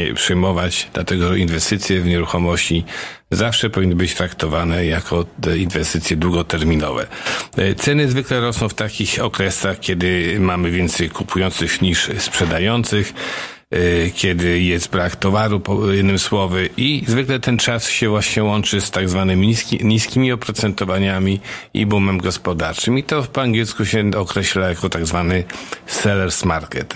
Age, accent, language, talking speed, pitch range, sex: 50-69, native, Polish, 125 wpm, 90-110 Hz, male